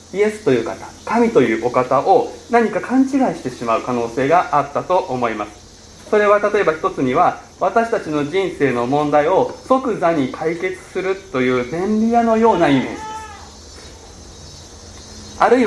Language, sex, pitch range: Japanese, male, 155-235 Hz